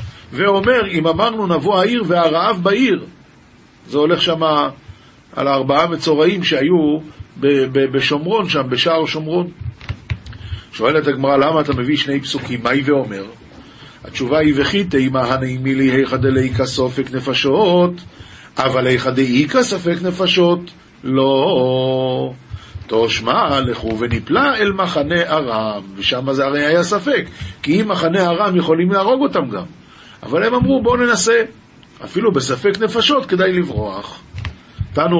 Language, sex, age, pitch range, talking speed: Hebrew, male, 50-69, 130-175 Hz, 130 wpm